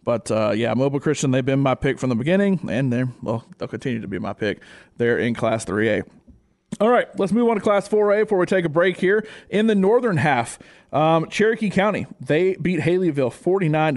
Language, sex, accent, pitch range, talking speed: English, male, American, 140-175 Hz, 215 wpm